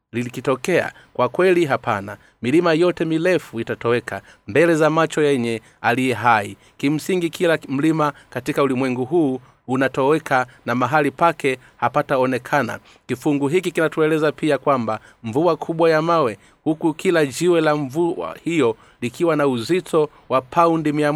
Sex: male